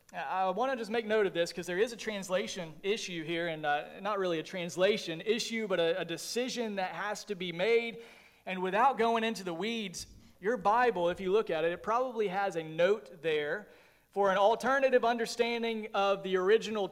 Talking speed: 200 wpm